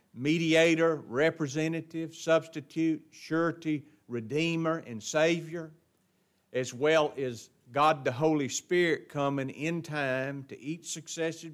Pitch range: 135-185 Hz